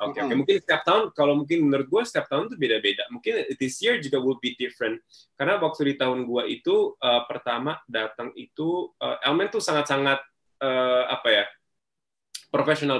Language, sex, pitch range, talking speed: Indonesian, male, 125-150 Hz, 180 wpm